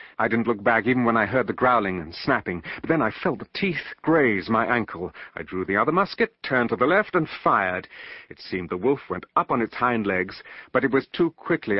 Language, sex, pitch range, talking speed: English, male, 105-135 Hz, 240 wpm